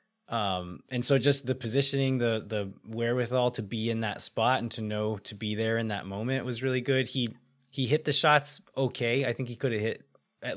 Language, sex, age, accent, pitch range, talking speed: English, male, 20-39, American, 110-135 Hz, 220 wpm